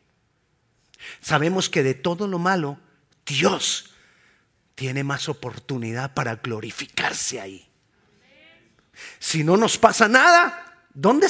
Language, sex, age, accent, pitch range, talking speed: Spanish, male, 40-59, Mexican, 140-210 Hz, 100 wpm